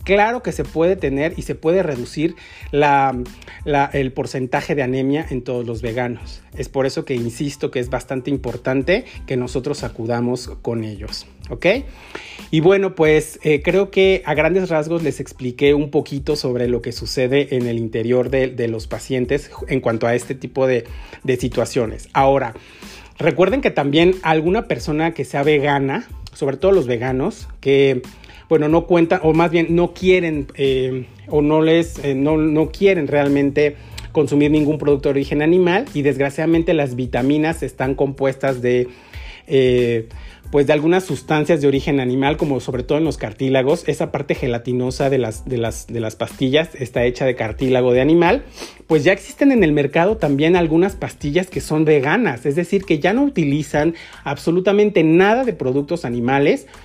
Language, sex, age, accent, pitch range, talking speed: Spanish, male, 40-59, Mexican, 130-160 Hz, 170 wpm